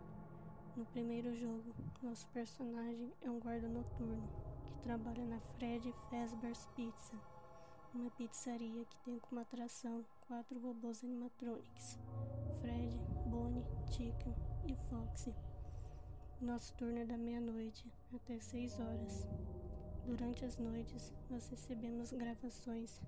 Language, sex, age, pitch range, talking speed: Portuguese, female, 20-39, 175-245 Hz, 110 wpm